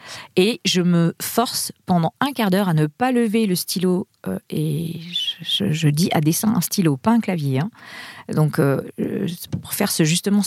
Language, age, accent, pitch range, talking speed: French, 40-59, French, 165-205 Hz, 195 wpm